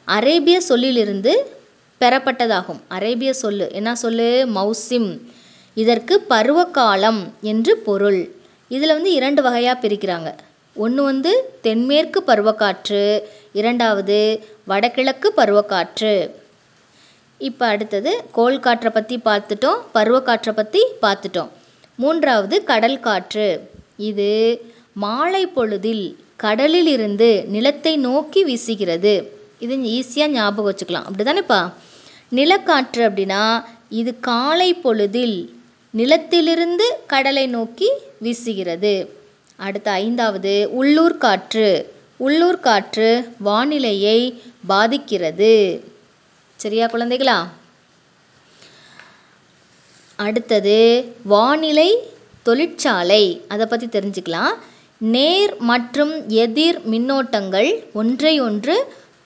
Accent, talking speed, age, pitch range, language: native, 65 wpm, 20-39, 210-275 Hz, Tamil